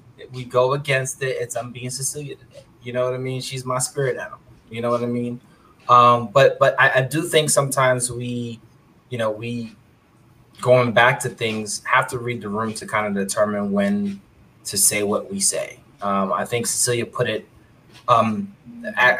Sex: male